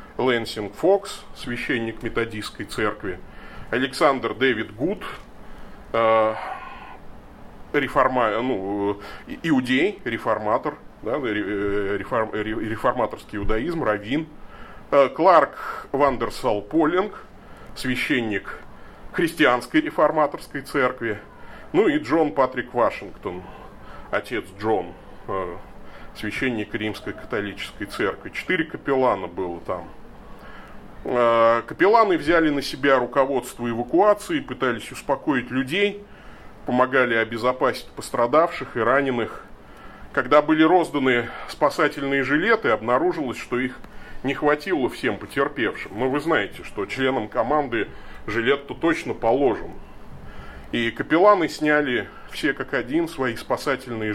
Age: 30-49